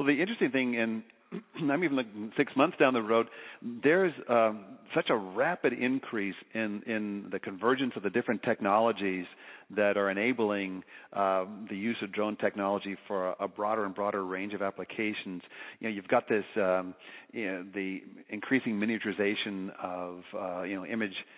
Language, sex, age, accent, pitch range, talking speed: English, male, 50-69, American, 95-110 Hz, 165 wpm